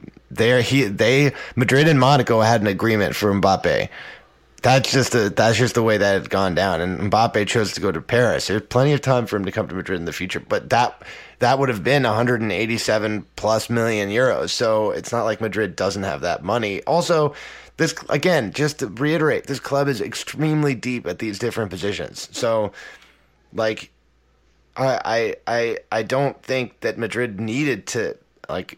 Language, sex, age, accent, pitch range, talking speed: English, male, 20-39, American, 100-130 Hz, 185 wpm